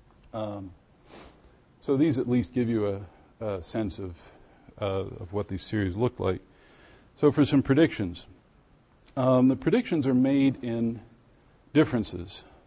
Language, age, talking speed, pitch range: English, 50-69, 135 wpm, 100-125 Hz